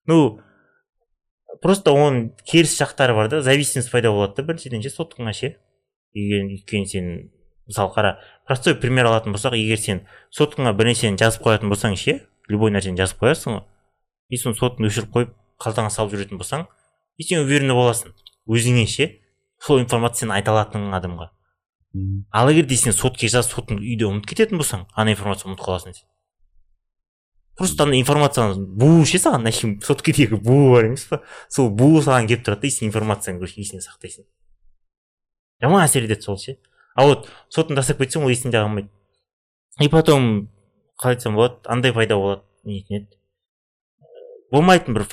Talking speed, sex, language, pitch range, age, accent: 75 wpm, male, Russian, 100-135 Hz, 30-49, Turkish